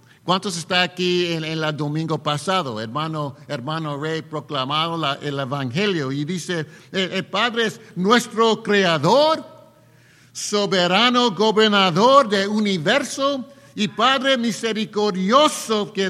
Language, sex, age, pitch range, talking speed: English, male, 60-79, 150-210 Hz, 110 wpm